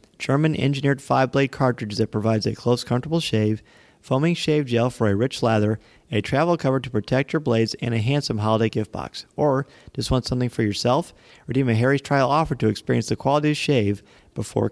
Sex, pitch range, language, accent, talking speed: male, 115-150 Hz, English, American, 190 wpm